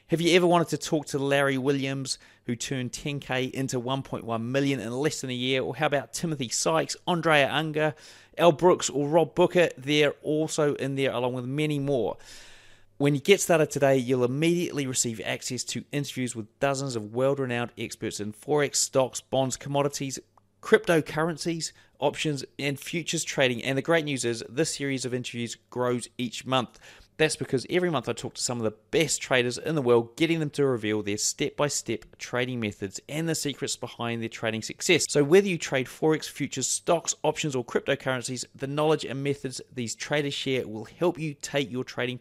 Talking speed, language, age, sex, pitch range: 185 wpm, English, 30-49, male, 125-150 Hz